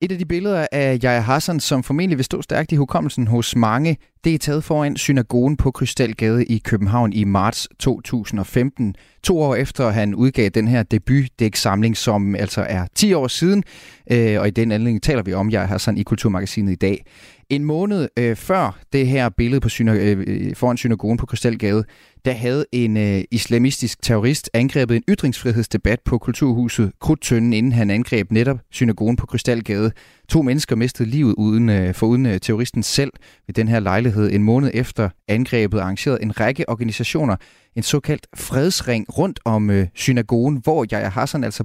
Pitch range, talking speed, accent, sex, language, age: 110-135 Hz, 170 wpm, native, male, Danish, 30-49